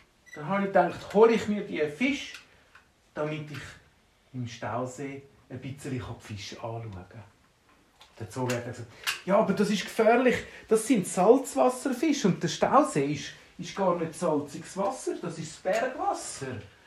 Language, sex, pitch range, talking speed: German, male, 150-220 Hz, 145 wpm